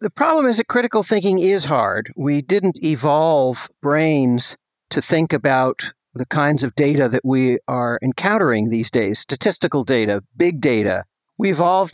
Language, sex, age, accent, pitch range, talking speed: English, male, 50-69, American, 135-175 Hz, 155 wpm